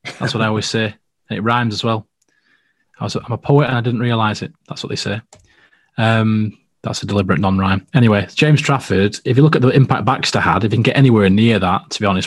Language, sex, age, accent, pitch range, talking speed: English, male, 20-39, British, 110-135 Hz, 245 wpm